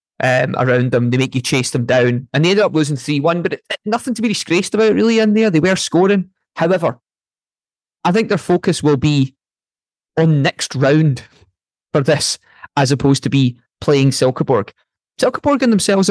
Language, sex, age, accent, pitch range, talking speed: English, male, 20-39, British, 130-175 Hz, 180 wpm